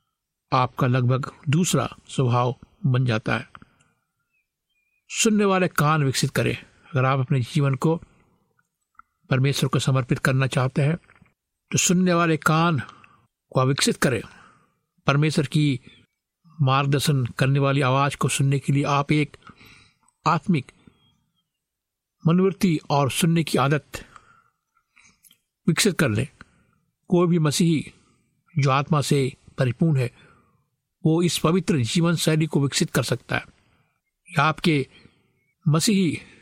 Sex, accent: male, native